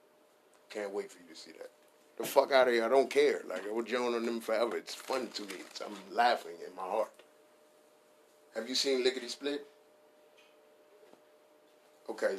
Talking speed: 180 wpm